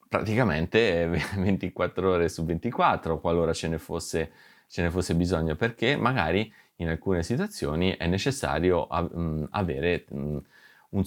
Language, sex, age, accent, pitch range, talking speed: Italian, male, 30-49, native, 75-95 Hz, 120 wpm